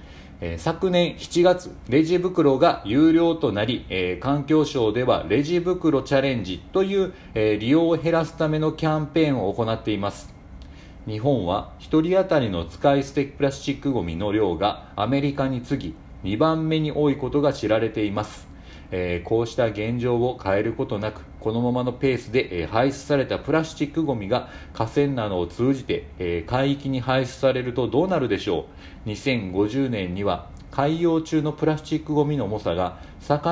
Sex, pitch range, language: male, 100-155 Hz, Japanese